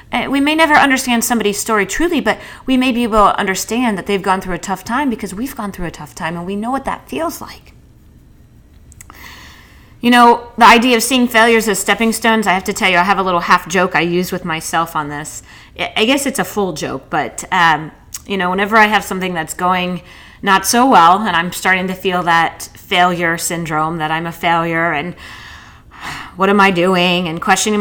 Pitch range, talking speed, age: 175-235 Hz, 215 wpm, 30-49